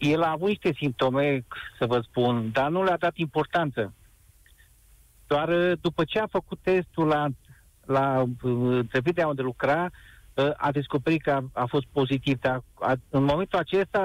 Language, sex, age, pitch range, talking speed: Romanian, male, 50-69, 135-180 Hz, 155 wpm